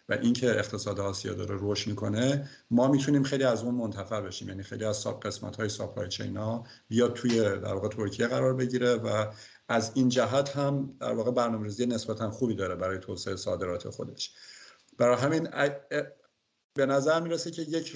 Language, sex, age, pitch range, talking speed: Persian, male, 50-69, 100-120 Hz, 170 wpm